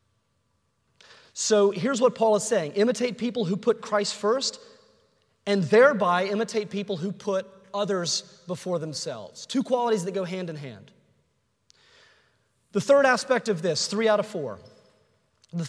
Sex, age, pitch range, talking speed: male, 30-49, 180-225 Hz, 145 wpm